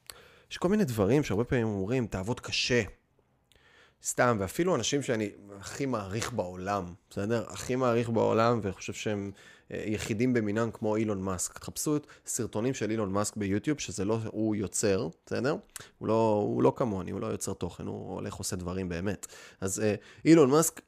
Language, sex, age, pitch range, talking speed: Hebrew, male, 20-39, 100-125 Hz, 165 wpm